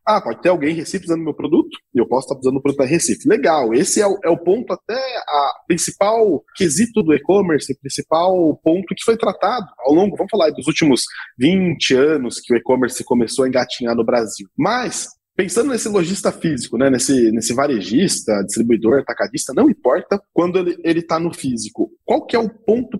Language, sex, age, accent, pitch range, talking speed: Portuguese, male, 20-39, Brazilian, 130-185 Hz, 200 wpm